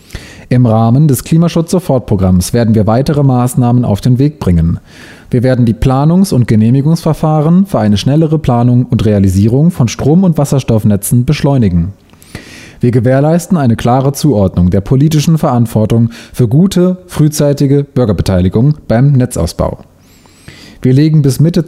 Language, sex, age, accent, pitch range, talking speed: German, male, 30-49, German, 100-140 Hz, 130 wpm